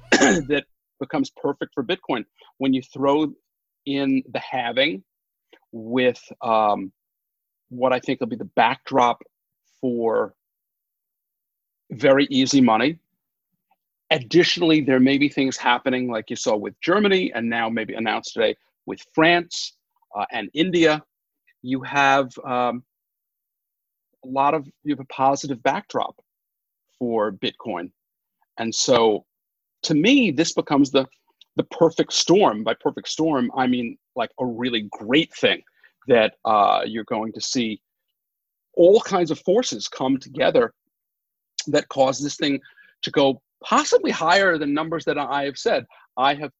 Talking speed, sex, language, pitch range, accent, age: 135 wpm, male, English, 125-155 Hz, American, 40-59